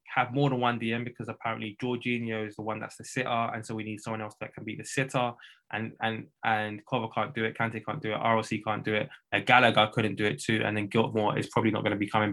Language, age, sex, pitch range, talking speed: English, 10-29, male, 110-130 Hz, 270 wpm